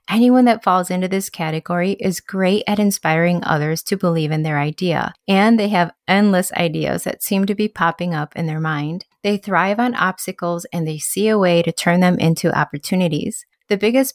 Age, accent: 30-49, American